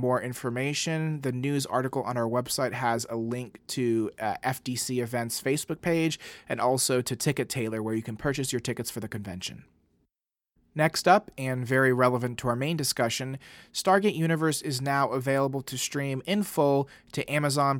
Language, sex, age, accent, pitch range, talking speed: English, male, 30-49, American, 120-145 Hz, 170 wpm